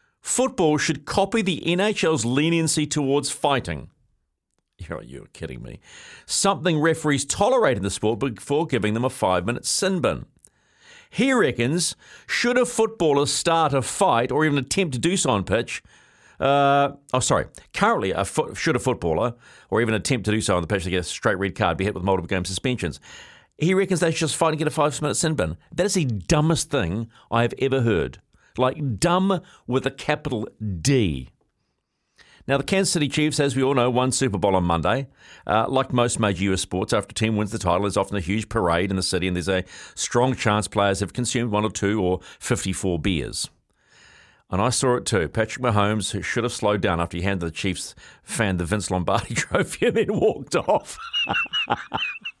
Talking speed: 190 wpm